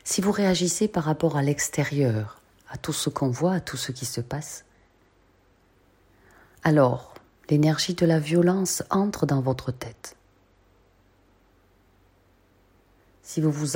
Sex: female